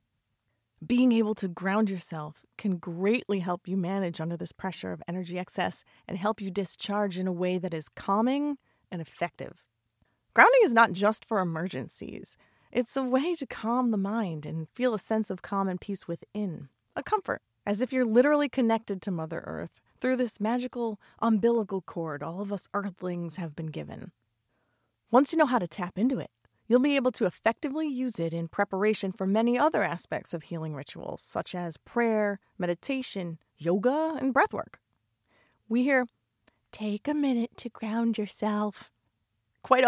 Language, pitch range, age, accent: English, 175-235 Hz, 30-49, American